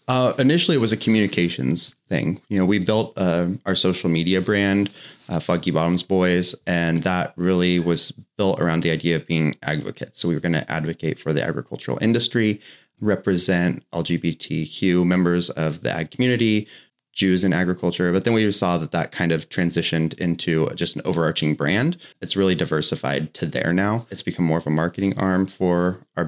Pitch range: 80-100 Hz